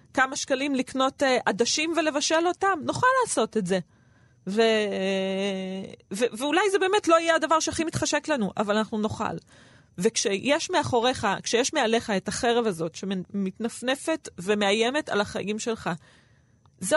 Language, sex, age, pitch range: Hebrew, female, 20-39, 210-290 Hz